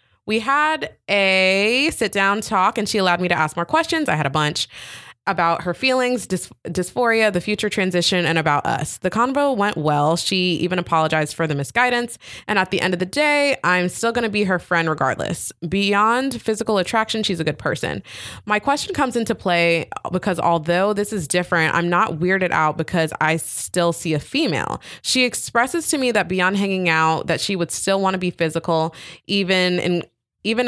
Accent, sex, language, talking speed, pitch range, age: American, female, English, 195 wpm, 165-210 Hz, 20-39